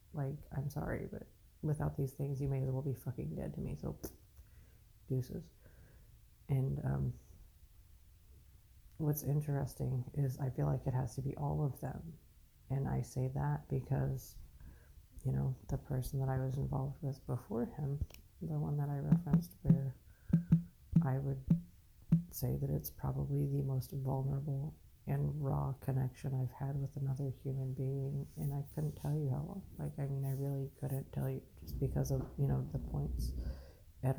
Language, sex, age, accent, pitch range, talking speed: English, female, 40-59, American, 90-140 Hz, 170 wpm